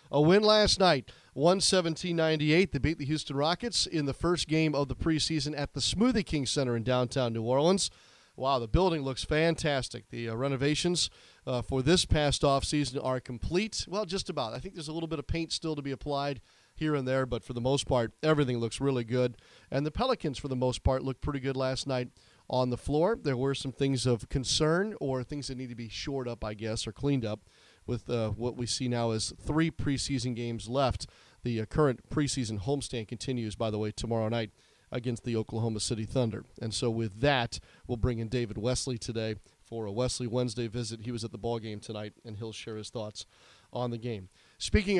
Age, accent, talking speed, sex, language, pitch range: 40-59, American, 215 wpm, male, English, 120-155 Hz